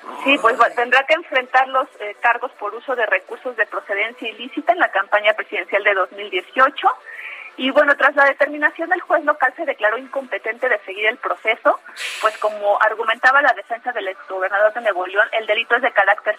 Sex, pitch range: female, 195-255 Hz